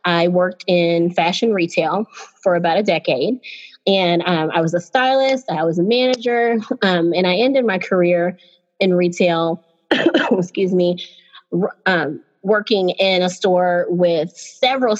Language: English